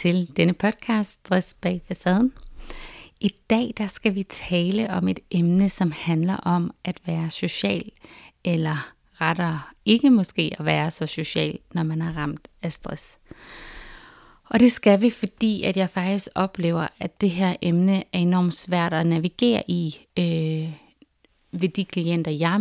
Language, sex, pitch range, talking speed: Danish, female, 165-200 Hz, 155 wpm